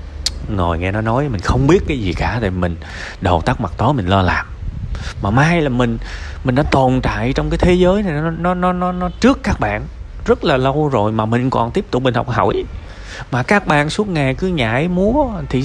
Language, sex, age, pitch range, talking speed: Vietnamese, male, 20-39, 100-145 Hz, 235 wpm